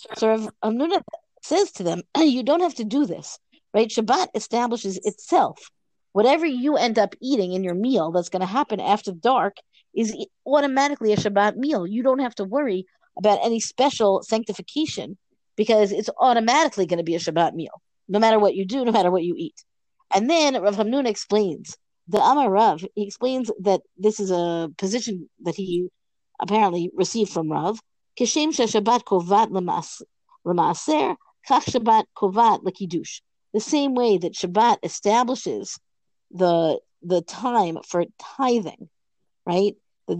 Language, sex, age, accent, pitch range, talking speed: English, female, 50-69, American, 190-245 Hz, 145 wpm